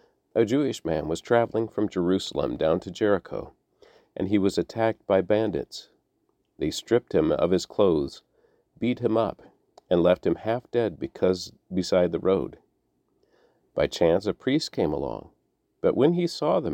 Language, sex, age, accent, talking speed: English, male, 40-59, American, 160 wpm